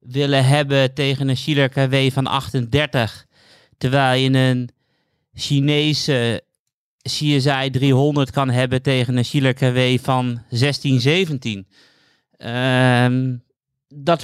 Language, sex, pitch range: Dutch, male, 120-140 Hz